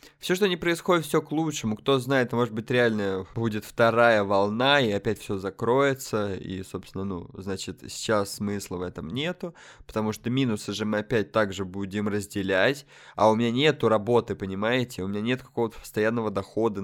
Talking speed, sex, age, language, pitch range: 175 wpm, male, 20-39, Russian, 100-125 Hz